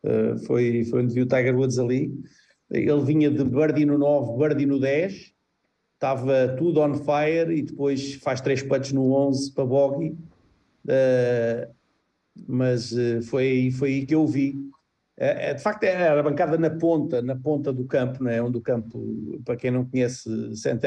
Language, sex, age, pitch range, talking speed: Portuguese, male, 50-69, 125-145 Hz, 175 wpm